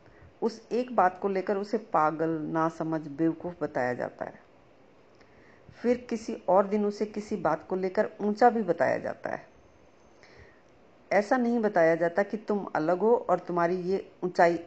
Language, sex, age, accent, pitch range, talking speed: Hindi, female, 50-69, native, 165-215 Hz, 155 wpm